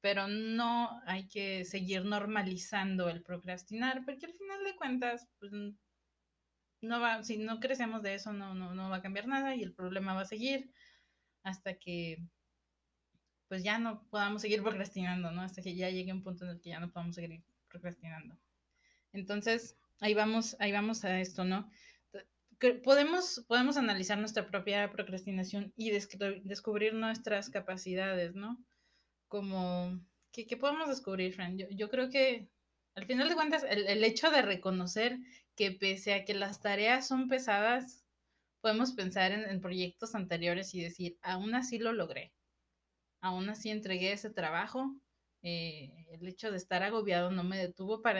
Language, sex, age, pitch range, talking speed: Spanish, female, 20-39, 180-225 Hz, 165 wpm